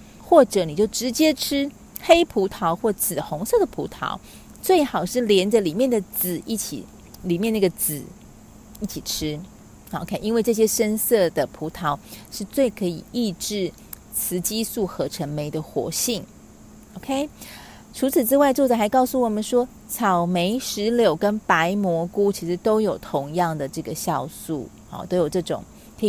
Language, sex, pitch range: Chinese, female, 175-235 Hz